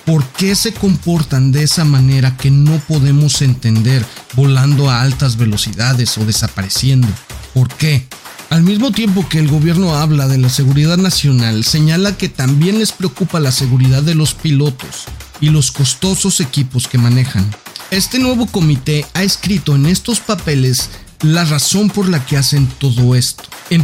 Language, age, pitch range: Spanish, 40-59, 125-175 Hz